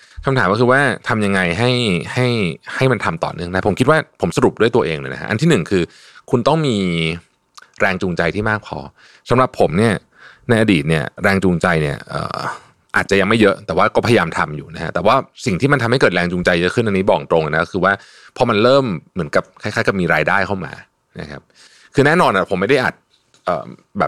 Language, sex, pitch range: Thai, male, 90-115 Hz